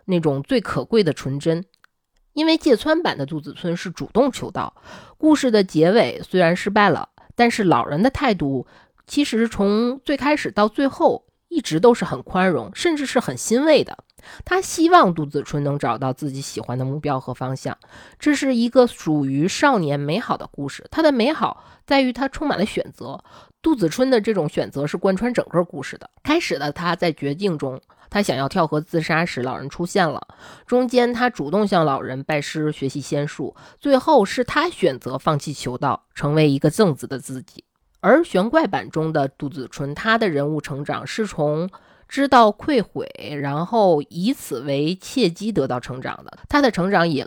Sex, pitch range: female, 145-235 Hz